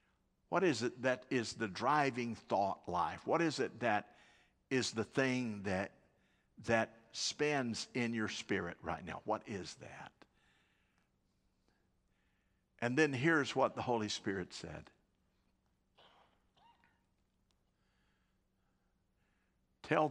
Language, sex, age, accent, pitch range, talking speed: English, male, 60-79, American, 95-120 Hz, 105 wpm